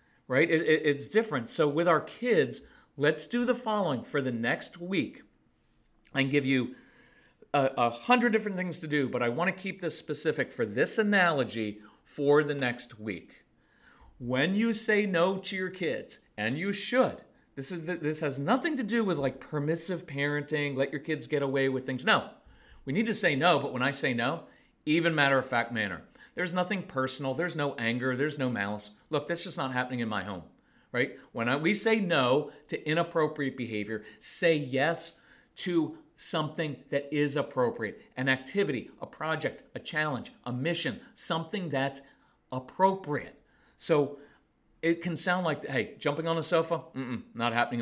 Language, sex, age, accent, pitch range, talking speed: English, male, 40-59, American, 130-175 Hz, 175 wpm